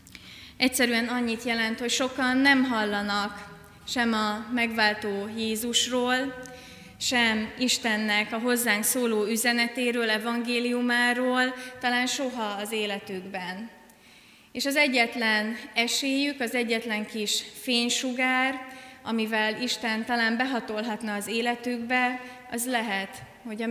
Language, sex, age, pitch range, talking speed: Hungarian, female, 30-49, 210-245 Hz, 100 wpm